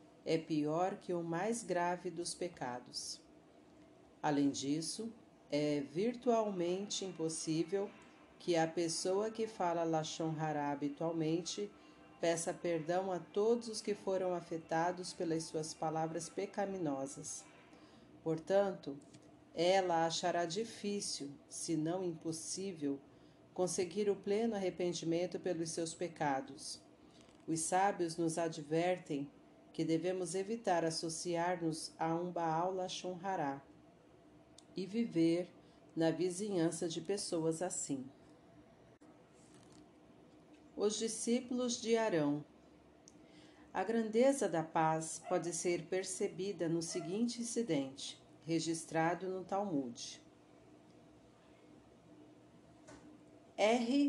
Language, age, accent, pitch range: Portuguese, 40-59, Brazilian, 160-190 Hz